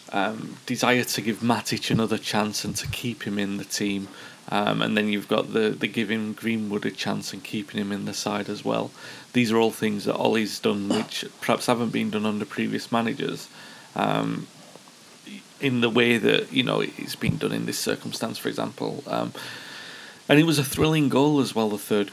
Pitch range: 110-135 Hz